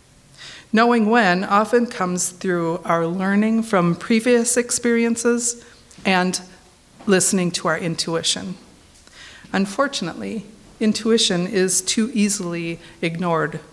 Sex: female